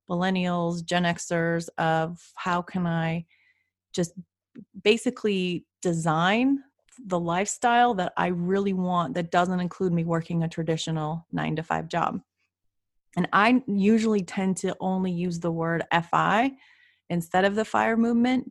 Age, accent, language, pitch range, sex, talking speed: 30-49, American, English, 175-220 Hz, female, 135 wpm